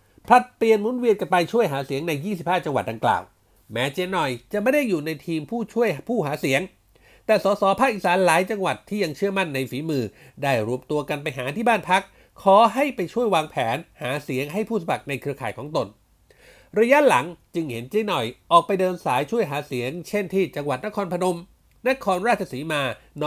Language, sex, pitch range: Thai, male, 140-210 Hz